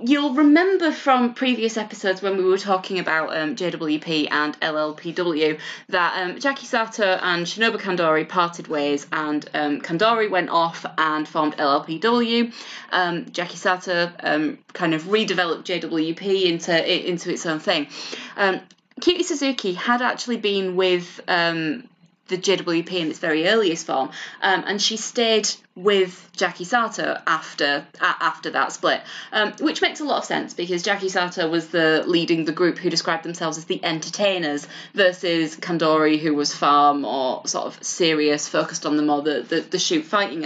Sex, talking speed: female, 165 wpm